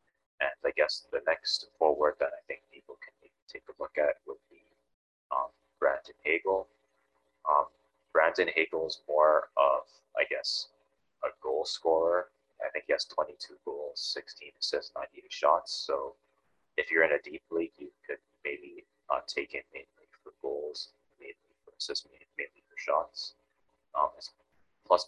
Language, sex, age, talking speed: English, male, 30-49, 160 wpm